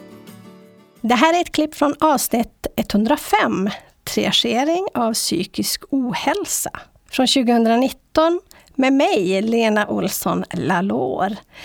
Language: English